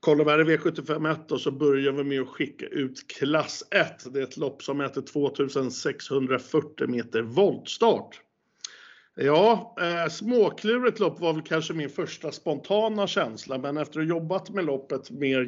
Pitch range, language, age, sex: 130-160 Hz, Swedish, 50-69, male